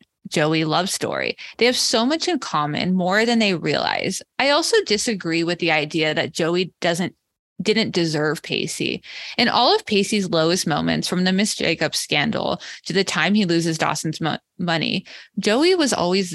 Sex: female